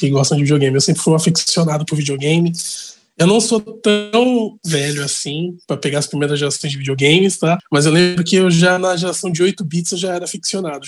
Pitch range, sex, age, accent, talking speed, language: 155-195 Hz, male, 20-39, Brazilian, 215 wpm, Portuguese